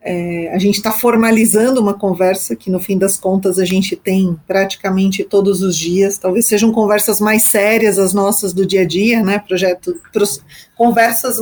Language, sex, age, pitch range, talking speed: Portuguese, female, 40-59, 190-225 Hz, 165 wpm